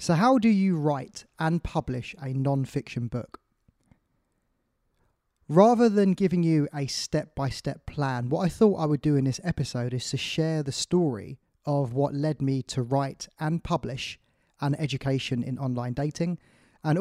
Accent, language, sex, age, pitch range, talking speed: British, English, male, 20-39, 130-155 Hz, 160 wpm